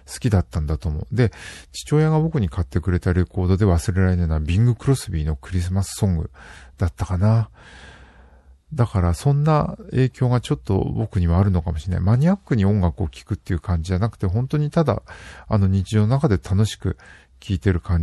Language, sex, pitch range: Japanese, male, 90-125 Hz